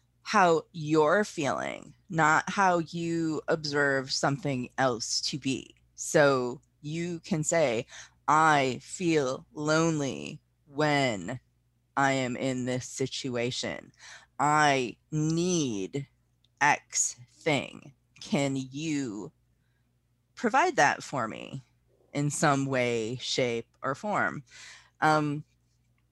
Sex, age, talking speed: female, 30-49, 95 wpm